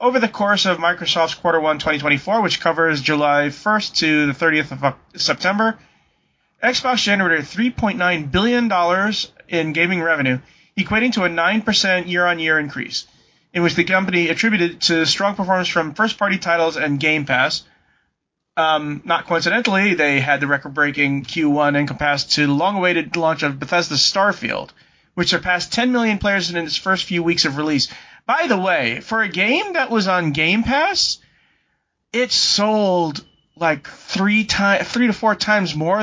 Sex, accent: male, American